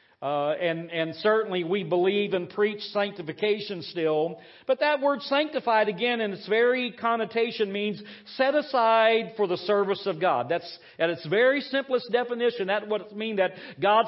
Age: 50-69